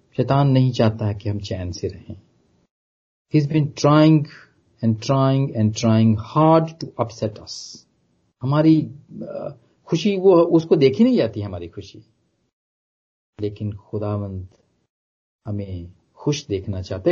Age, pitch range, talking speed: 40-59, 110-170 Hz, 120 wpm